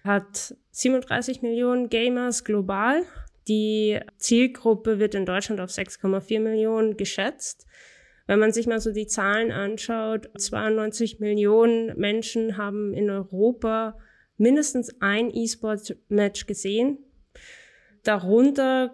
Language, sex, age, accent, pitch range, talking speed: German, female, 20-39, German, 195-225 Hz, 105 wpm